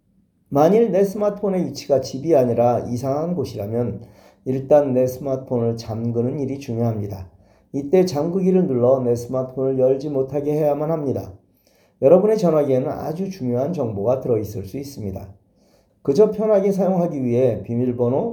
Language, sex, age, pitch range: Korean, male, 40-59, 120-165 Hz